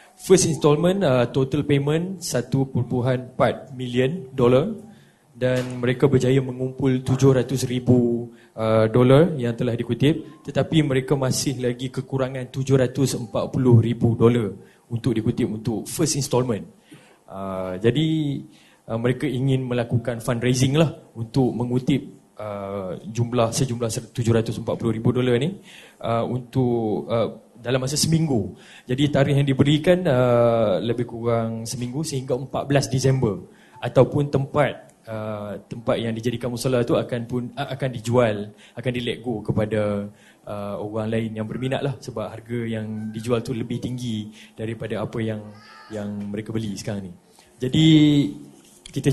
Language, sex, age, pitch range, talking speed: Malay, male, 20-39, 115-135 Hz, 130 wpm